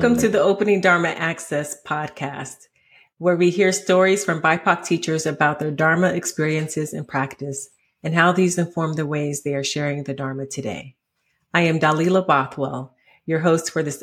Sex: female